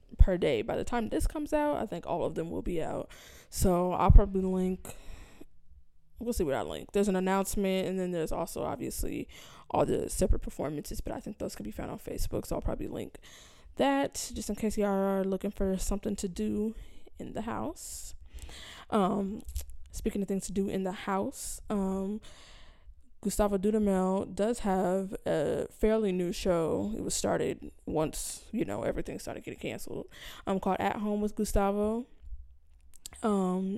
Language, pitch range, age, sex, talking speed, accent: English, 180-210 Hz, 10-29, female, 175 wpm, American